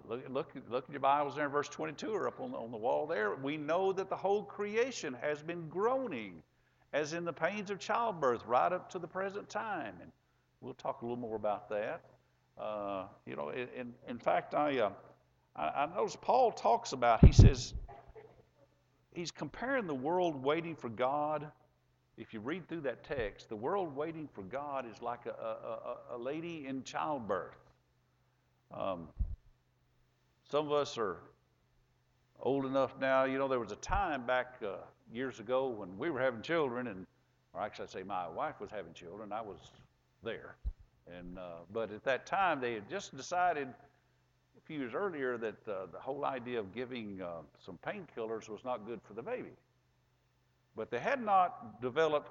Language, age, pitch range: English, 50-69, 105-155 Hz